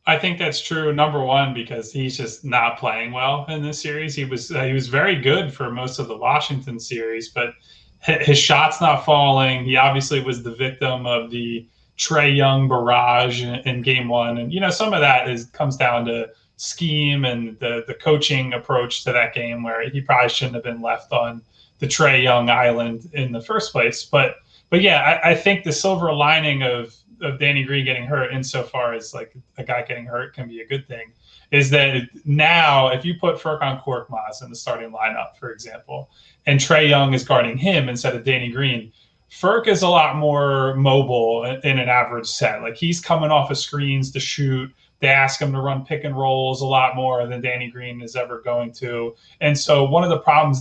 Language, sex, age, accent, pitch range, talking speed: English, male, 20-39, American, 120-145 Hz, 210 wpm